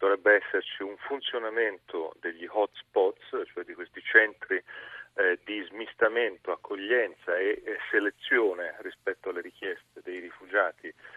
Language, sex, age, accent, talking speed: Italian, male, 40-59, native, 120 wpm